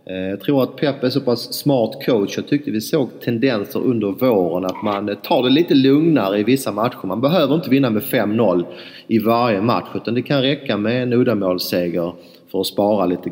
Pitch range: 95-120 Hz